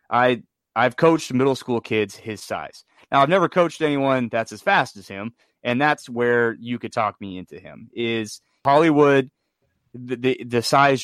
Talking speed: 180 wpm